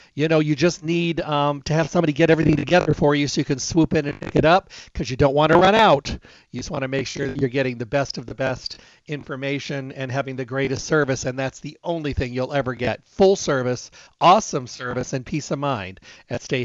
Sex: male